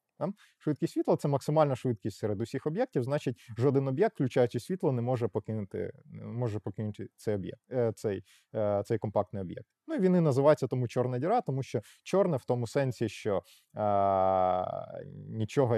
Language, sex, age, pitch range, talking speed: Ukrainian, male, 20-39, 110-145 Hz, 150 wpm